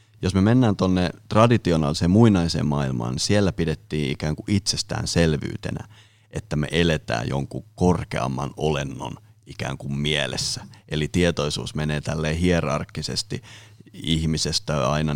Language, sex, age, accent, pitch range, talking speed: Finnish, male, 30-49, native, 80-110 Hz, 120 wpm